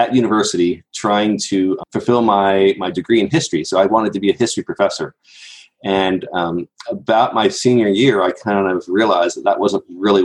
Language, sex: English, male